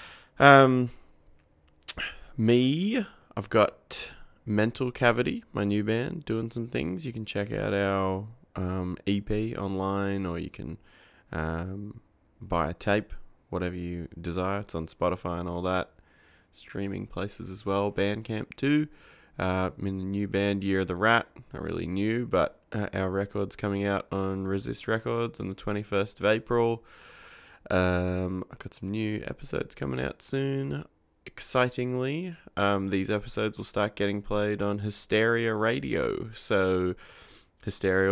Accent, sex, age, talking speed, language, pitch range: Australian, male, 20-39, 145 wpm, English, 85-110 Hz